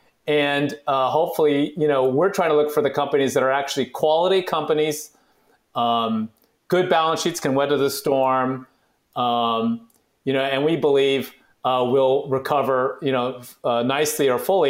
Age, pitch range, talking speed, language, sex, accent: 30-49, 130-165 Hz, 165 wpm, English, male, American